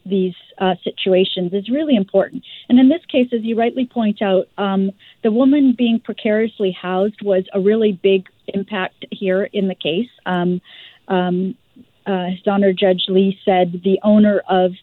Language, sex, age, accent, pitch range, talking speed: English, female, 40-59, American, 195-235 Hz, 160 wpm